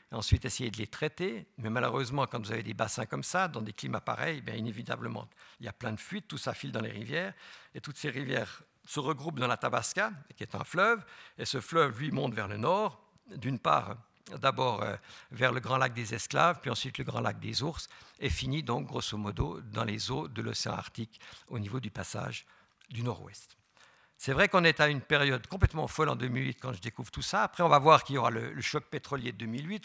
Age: 60-79